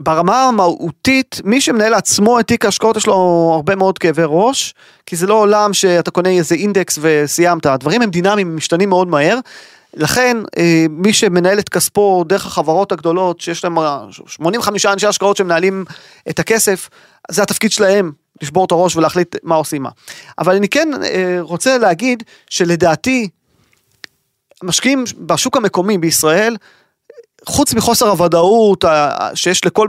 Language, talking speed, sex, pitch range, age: Hebrew, 140 wpm, male, 170-215 Hz, 30-49